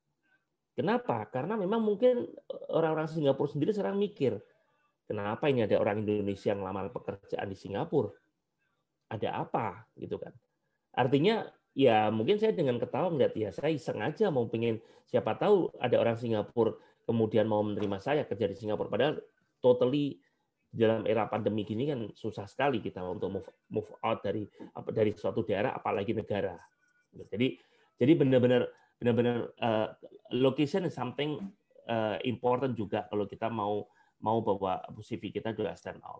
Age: 30-49